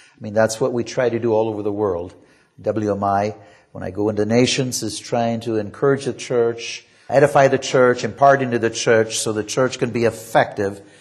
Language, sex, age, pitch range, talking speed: English, male, 50-69, 110-145 Hz, 200 wpm